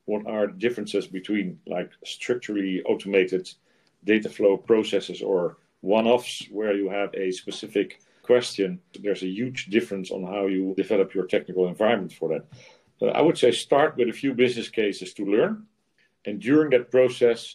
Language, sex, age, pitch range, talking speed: English, male, 50-69, 90-105 Hz, 160 wpm